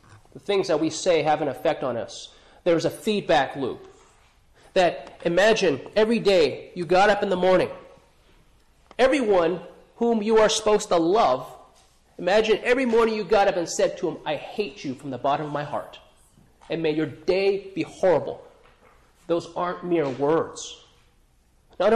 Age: 30-49